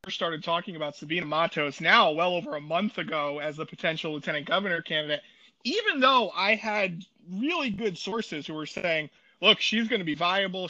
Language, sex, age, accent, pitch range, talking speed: English, male, 30-49, American, 165-225 Hz, 185 wpm